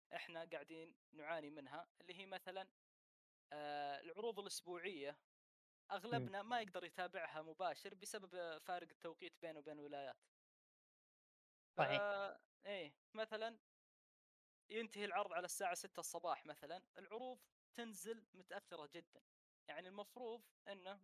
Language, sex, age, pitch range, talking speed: Arabic, female, 20-39, 170-215 Hz, 110 wpm